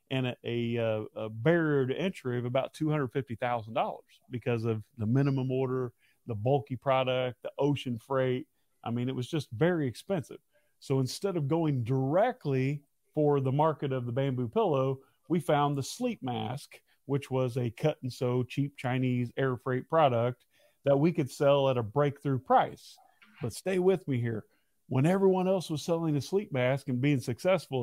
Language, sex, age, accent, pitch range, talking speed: English, male, 40-59, American, 130-170 Hz, 175 wpm